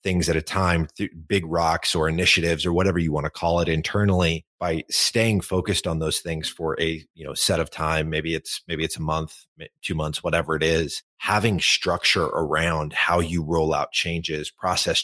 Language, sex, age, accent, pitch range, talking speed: English, male, 30-49, American, 80-95 Hz, 195 wpm